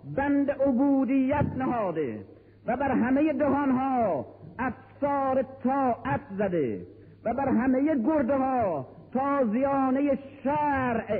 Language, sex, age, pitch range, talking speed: Persian, male, 50-69, 225-275 Hz, 95 wpm